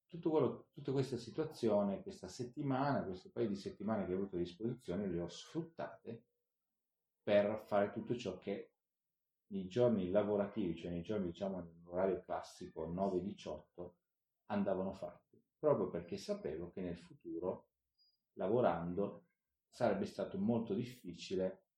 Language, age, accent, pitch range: Italian, 40-59, native, 90-115 Hz